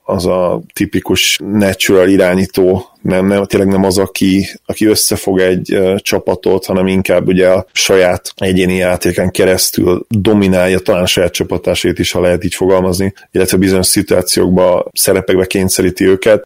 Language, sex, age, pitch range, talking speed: Hungarian, male, 30-49, 95-100 Hz, 140 wpm